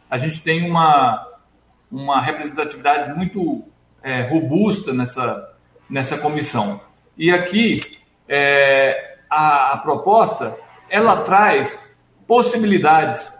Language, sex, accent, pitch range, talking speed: Portuguese, male, Brazilian, 145-200 Hz, 85 wpm